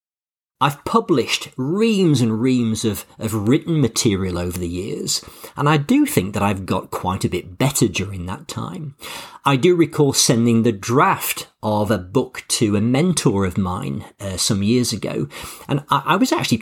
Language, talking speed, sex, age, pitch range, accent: English, 175 wpm, male, 40-59, 100-135 Hz, British